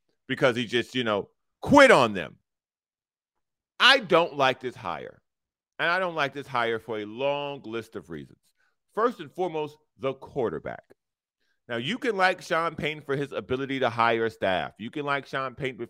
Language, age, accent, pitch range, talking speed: English, 40-59, American, 125-155 Hz, 175 wpm